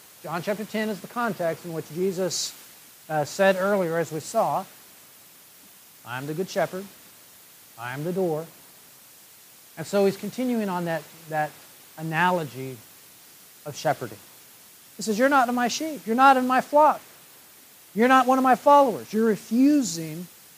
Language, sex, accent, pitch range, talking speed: English, male, American, 150-220 Hz, 155 wpm